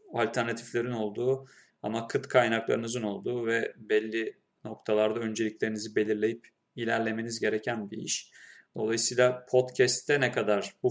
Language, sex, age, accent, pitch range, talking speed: Turkish, male, 30-49, native, 105-120 Hz, 110 wpm